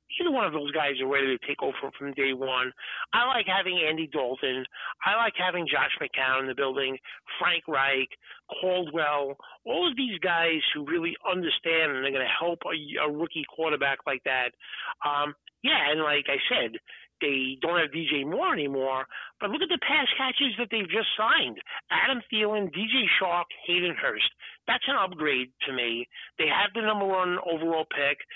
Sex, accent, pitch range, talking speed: male, American, 140-185 Hz, 185 wpm